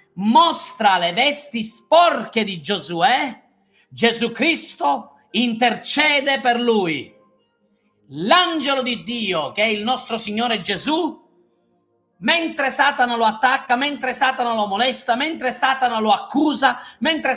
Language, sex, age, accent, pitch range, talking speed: Italian, male, 40-59, native, 235-305 Hz, 115 wpm